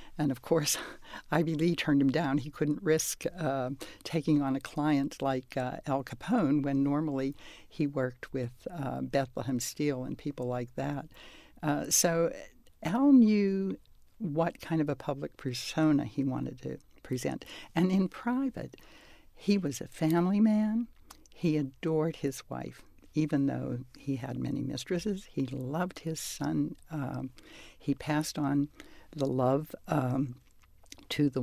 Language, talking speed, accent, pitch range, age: English, 145 wpm, American, 140-185 Hz, 60-79